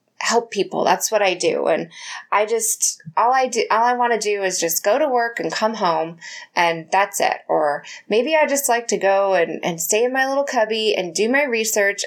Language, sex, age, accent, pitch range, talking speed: English, female, 20-39, American, 185-255 Hz, 230 wpm